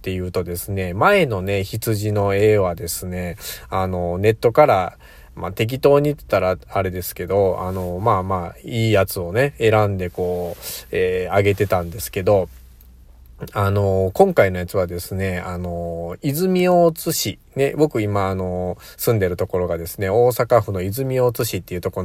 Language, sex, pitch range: Japanese, male, 90-115 Hz